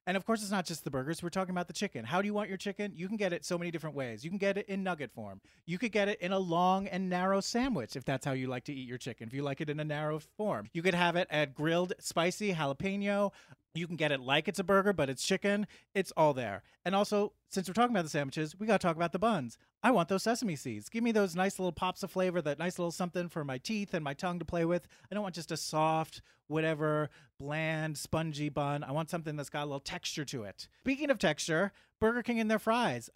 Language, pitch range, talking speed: English, 155-195 Hz, 275 wpm